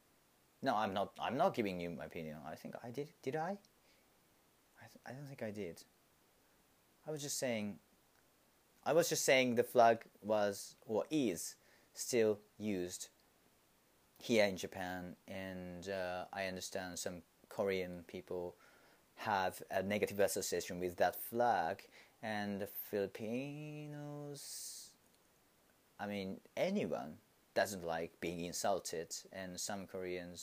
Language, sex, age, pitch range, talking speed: English, male, 30-49, 85-105 Hz, 130 wpm